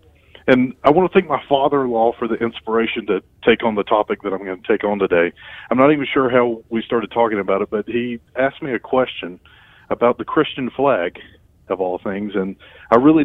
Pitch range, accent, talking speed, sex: 100-130 Hz, American, 215 wpm, male